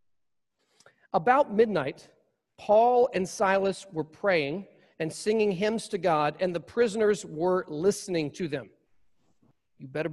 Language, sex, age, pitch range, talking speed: English, male, 40-59, 185-225 Hz, 125 wpm